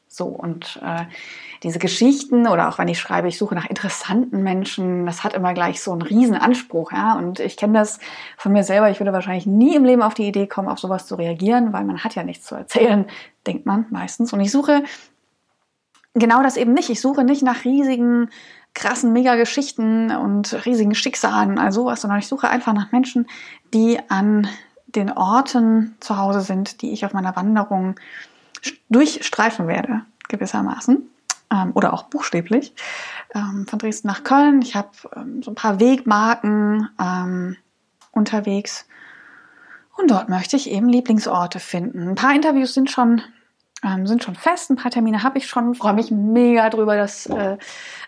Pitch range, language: 200-250 Hz, German